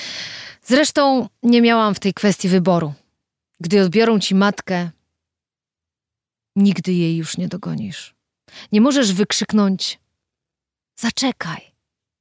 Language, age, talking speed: Polish, 30-49, 100 wpm